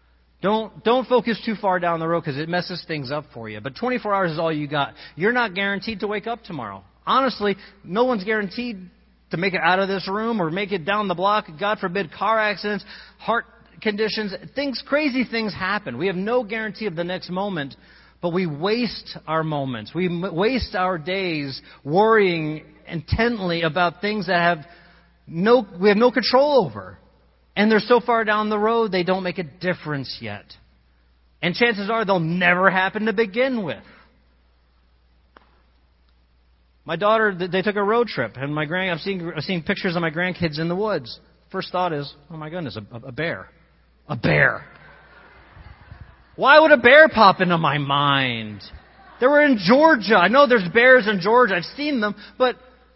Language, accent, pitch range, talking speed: English, American, 155-220 Hz, 180 wpm